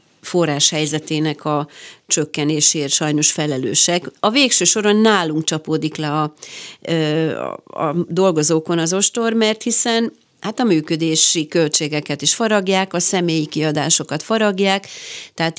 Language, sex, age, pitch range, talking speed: Hungarian, female, 40-59, 155-210 Hz, 115 wpm